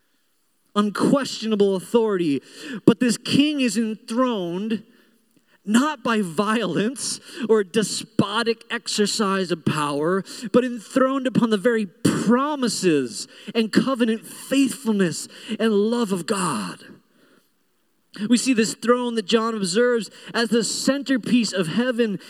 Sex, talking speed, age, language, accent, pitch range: male, 110 wpm, 30-49, English, American, 195-240 Hz